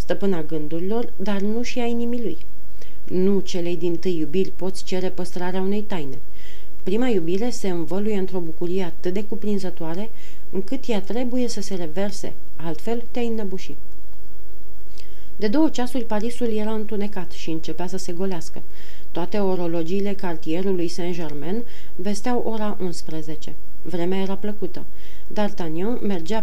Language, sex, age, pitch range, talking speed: Romanian, female, 40-59, 175-210 Hz, 135 wpm